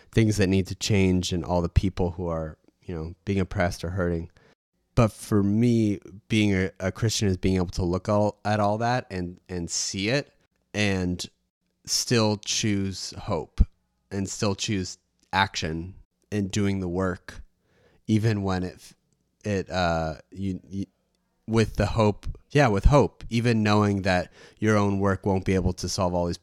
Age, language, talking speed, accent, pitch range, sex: 30-49, English, 170 wpm, American, 90-105 Hz, male